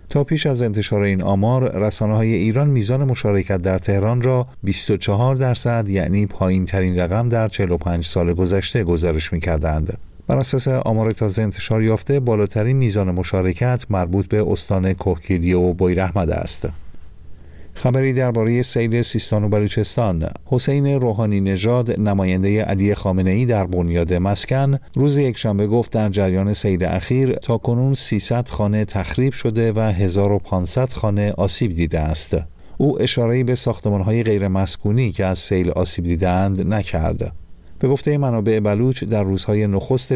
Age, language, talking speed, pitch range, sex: 50-69, Persian, 140 wpm, 95-120 Hz, male